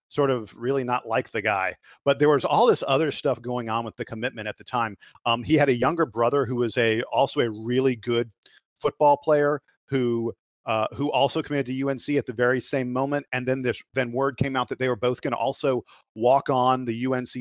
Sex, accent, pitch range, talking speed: male, American, 120-135 Hz, 230 wpm